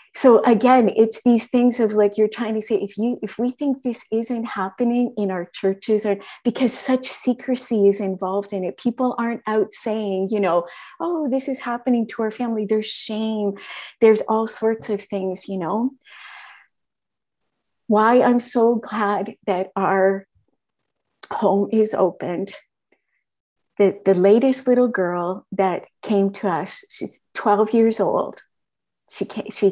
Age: 30-49